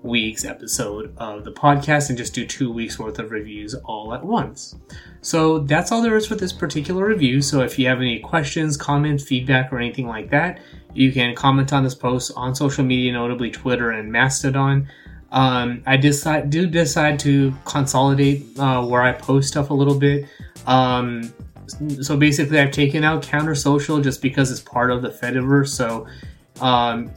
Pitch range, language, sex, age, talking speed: 125-145 Hz, English, male, 20-39, 180 wpm